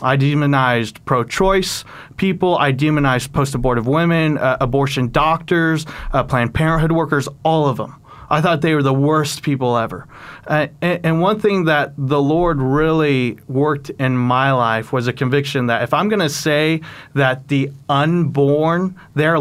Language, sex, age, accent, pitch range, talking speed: English, male, 30-49, American, 135-165 Hz, 160 wpm